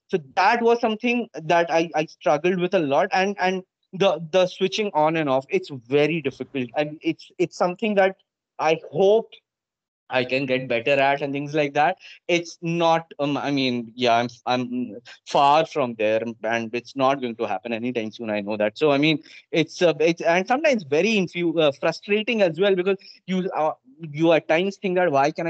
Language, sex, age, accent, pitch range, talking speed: English, male, 20-39, Indian, 140-190 Hz, 205 wpm